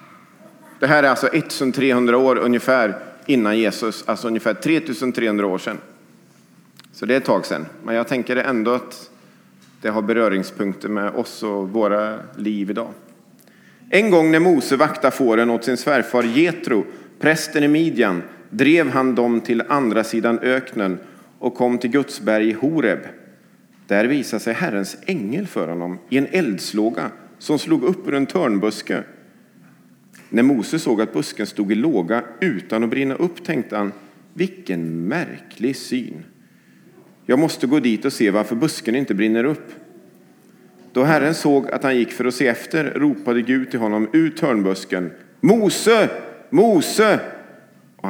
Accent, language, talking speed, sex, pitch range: Swedish, English, 150 wpm, male, 105-140 Hz